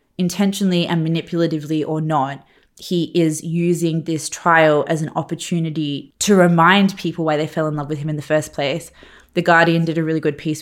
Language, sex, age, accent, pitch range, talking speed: English, female, 20-39, Australian, 155-170 Hz, 190 wpm